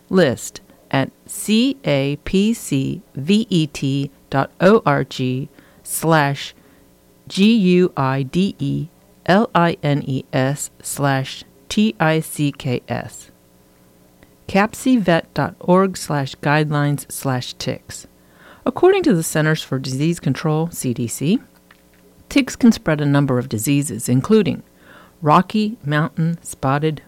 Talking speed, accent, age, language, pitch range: 60 wpm, American, 50-69, English, 130-185 Hz